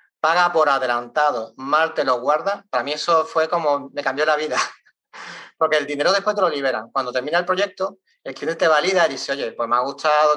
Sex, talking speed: male, 220 wpm